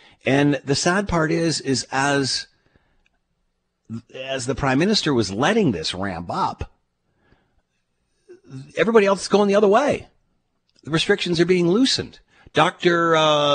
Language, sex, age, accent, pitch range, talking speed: English, male, 50-69, American, 110-150 Hz, 135 wpm